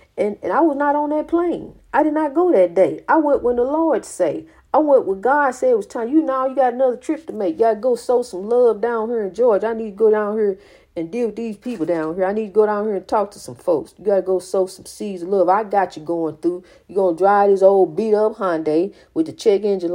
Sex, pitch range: female, 200-265 Hz